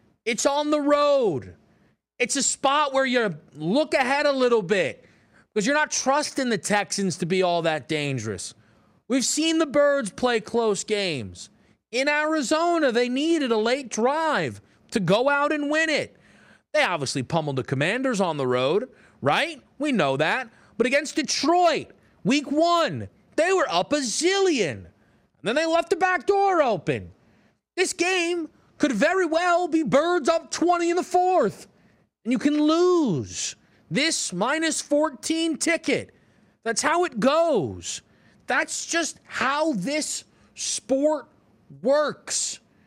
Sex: male